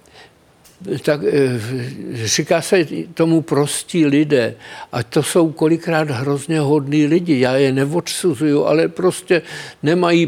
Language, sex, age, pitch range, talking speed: Czech, male, 60-79, 140-165 Hz, 110 wpm